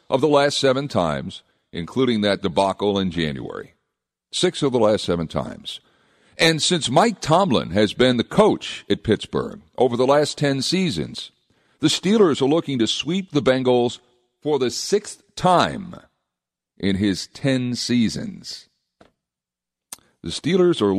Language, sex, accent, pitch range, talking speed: English, male, American, 90-130 Hz, 145 wpm